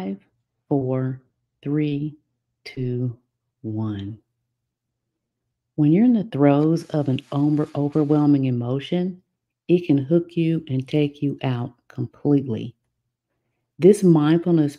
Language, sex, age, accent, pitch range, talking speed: English, female, 50-69, American, 120-150 Hz, 100 wpm